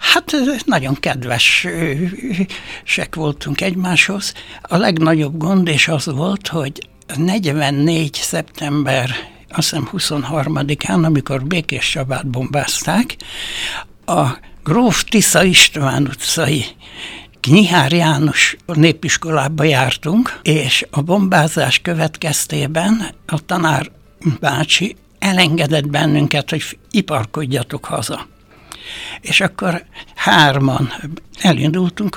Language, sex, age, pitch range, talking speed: Hungarian, male, 60-79, 145-175 Hz, 80 wpm